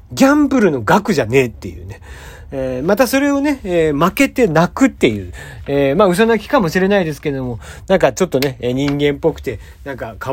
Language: Japanese